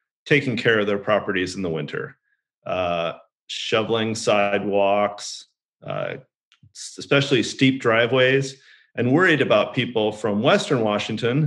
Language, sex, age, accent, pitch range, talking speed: English, male, 40-59, American, 105-130 Hz, 115 wpm